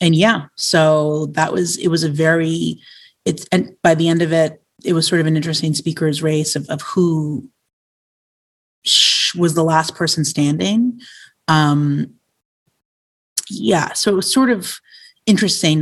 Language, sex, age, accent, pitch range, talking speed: English, female, 30-49, American, 155-195 Hz, 150 wpm